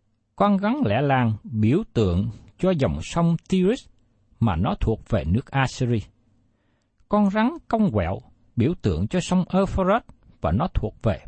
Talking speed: 155 wpm